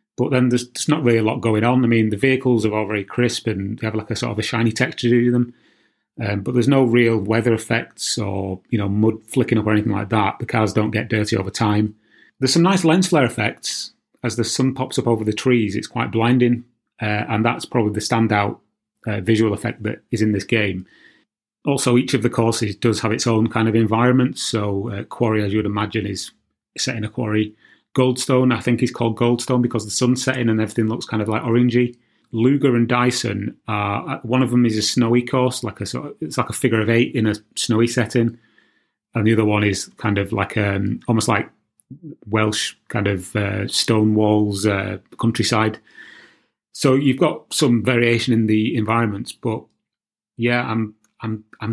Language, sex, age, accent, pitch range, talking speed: English, male, 30-49, British, 110-125 Hz, 210 wpm